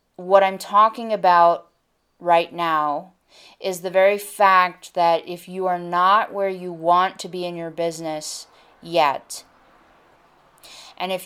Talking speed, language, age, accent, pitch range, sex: 140 wpm, English, 20-39, American, 170-195 Hz, female